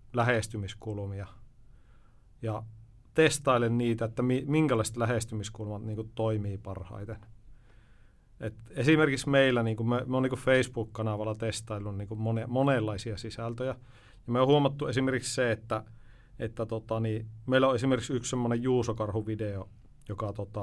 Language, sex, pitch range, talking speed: Finnish, male, 110-125 Hz, 120 wpm